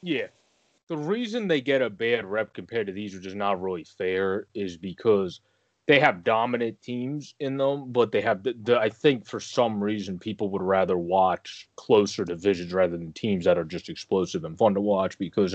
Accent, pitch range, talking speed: American, 95-125 Hz, 200 wpm